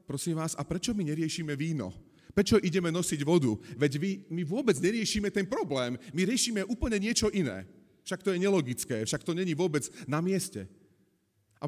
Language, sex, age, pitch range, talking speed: Slovak, male, 40-59, 120-185 Hz, 175 wpm